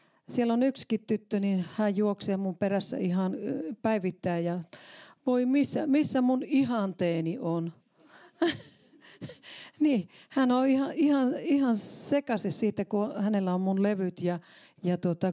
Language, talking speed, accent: Finnish, 130 wpm, native